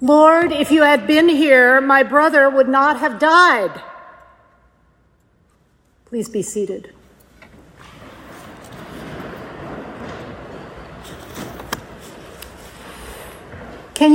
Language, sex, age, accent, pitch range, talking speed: English, female, 50-69, American, 205-260 Hz, 70 wpm